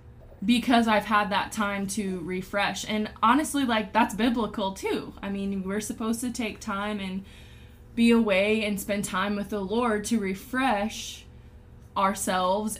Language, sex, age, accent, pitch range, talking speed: English, female, 10-29, American, 195-235 Hz, 150 wpm